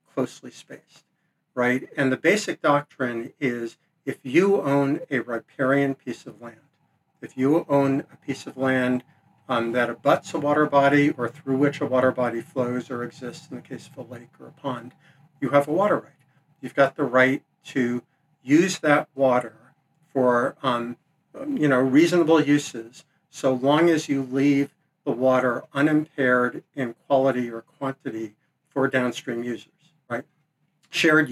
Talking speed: 155 wpm